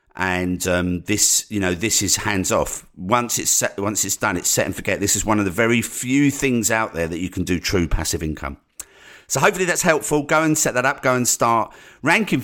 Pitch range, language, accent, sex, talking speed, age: 95-120 Hz, English, British, male, 235 wpm, 50-69